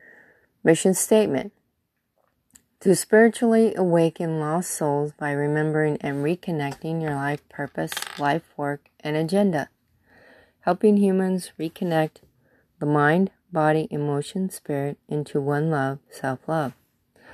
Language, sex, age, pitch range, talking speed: English, female, 30-49, 145-175 Hz, 105 wpm